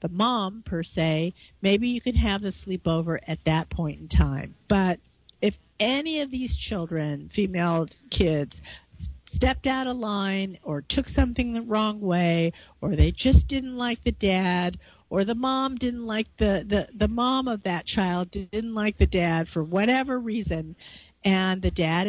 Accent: American